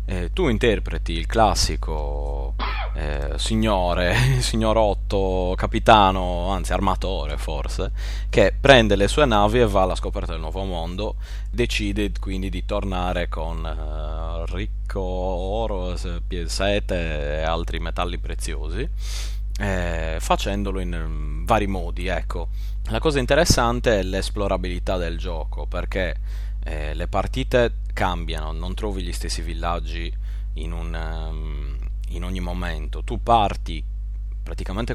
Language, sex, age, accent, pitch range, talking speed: Italian, male, 30-49, native, 85-100 Hz, 115 wpm